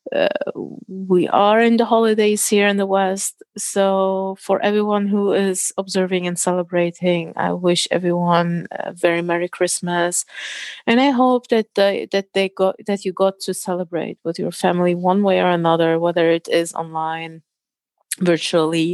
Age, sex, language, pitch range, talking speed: 30-49, female, English, 175-210 Hz, 150 wpm